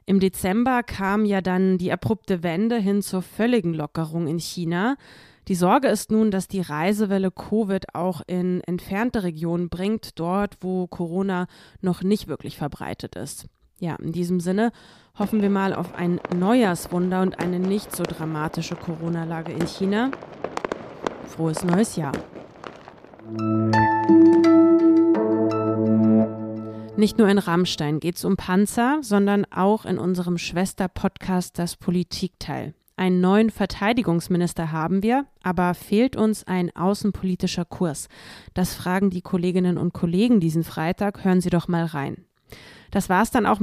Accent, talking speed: German, 135 wpm